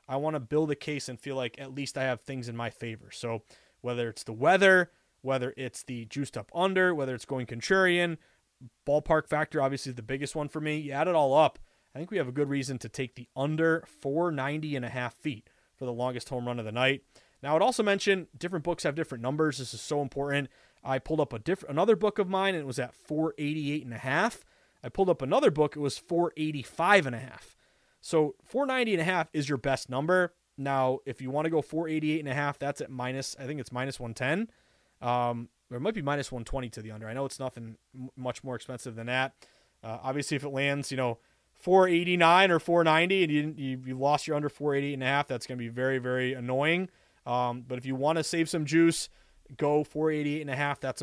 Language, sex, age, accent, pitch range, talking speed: English, male, 30-49, American, 125-155 Hz, 235 wpm